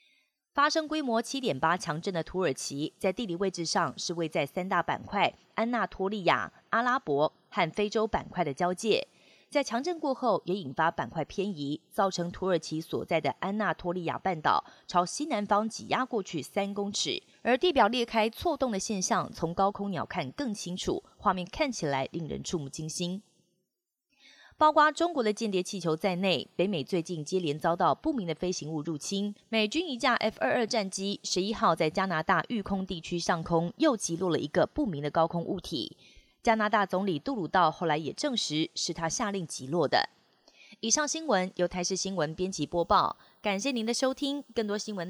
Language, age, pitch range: Chinese, 20-39, 170-225 Hz